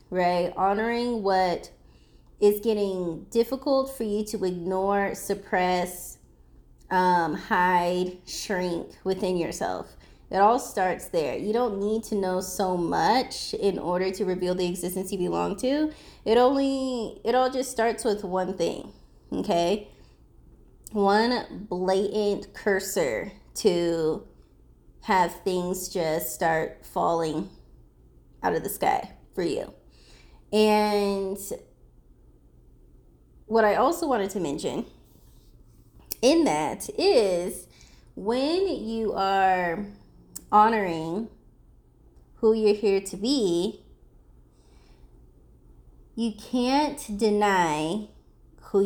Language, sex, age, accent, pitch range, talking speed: English, female, 20-39, American, 180-230 Hz, 105 wpm